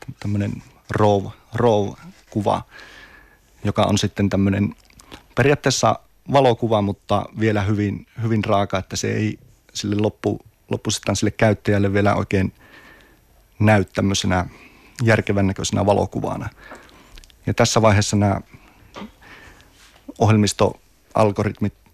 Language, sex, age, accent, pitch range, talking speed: Finnish, male, 30-49, native, 100-110 Hz, 85 wpm